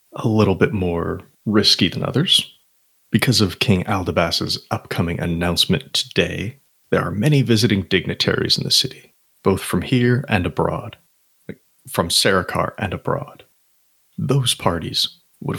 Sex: male